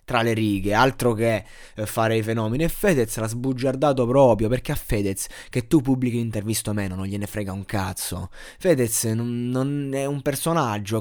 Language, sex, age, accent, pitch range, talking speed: Italian, male, 20-39, native, 115-155 Hz, 180 wpm